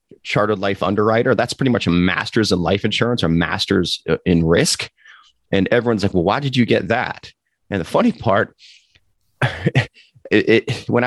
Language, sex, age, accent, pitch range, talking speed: English, male, 30-49, American, 95-120 Hz, 155 wpm